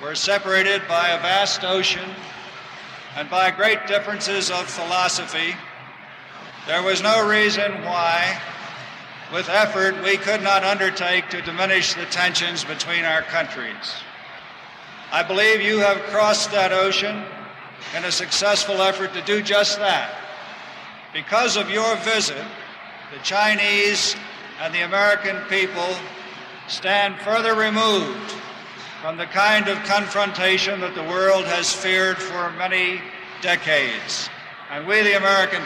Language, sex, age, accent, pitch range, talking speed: English, male, 60-79, American, 180-205 Hz, 125 wpm